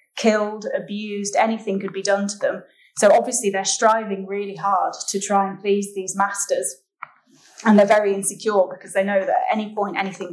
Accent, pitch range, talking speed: British, 195-220 Hz, 185 wpm